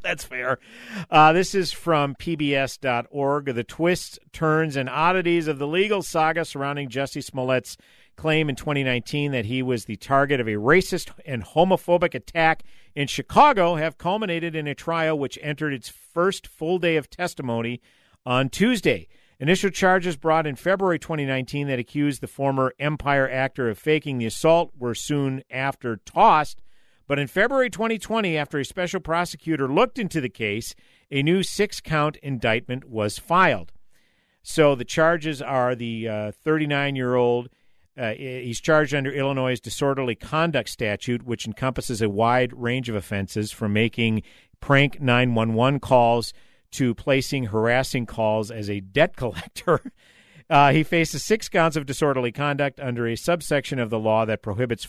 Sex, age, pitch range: male, 50-69, 120-160 Hz